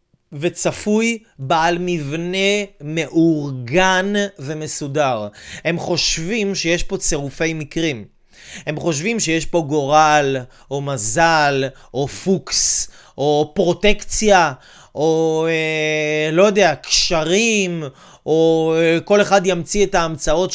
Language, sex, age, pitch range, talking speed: Hebrew, male, 30-49, 155-200 Hz, 100 wpm